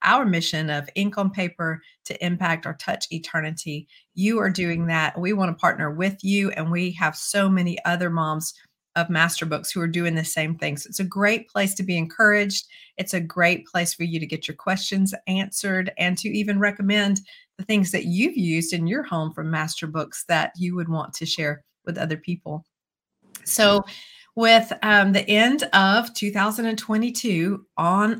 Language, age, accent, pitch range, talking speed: English, 50-69, American, 170-215 Hz, 185 wpm